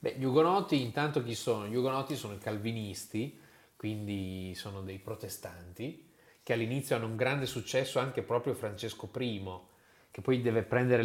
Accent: native